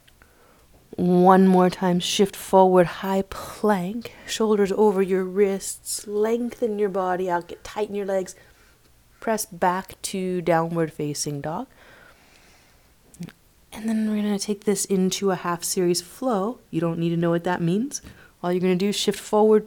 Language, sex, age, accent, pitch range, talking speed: English, female, 30-49, American, 170-210 Hz, 155 wpm